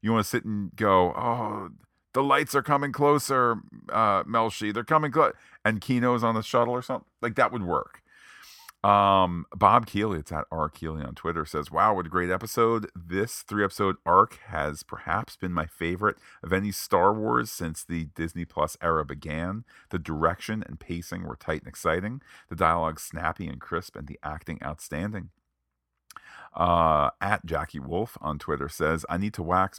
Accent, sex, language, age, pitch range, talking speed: American, male, English, 40-59, 80-100 Hz, 175 wpm